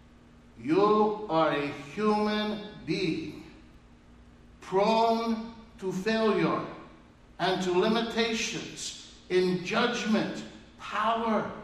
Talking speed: 70 wpm